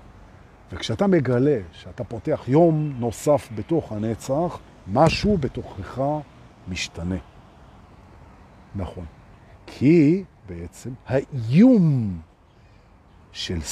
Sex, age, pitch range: male, 50-69, 100-150 Hz